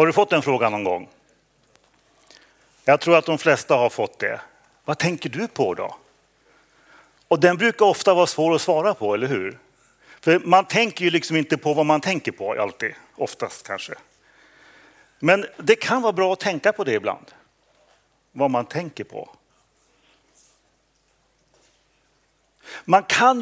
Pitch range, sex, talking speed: 140-175 Hz, male, 155 wpm